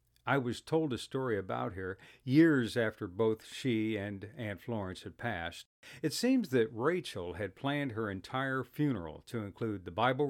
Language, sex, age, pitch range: English, male, 60-79, 110-155 Hz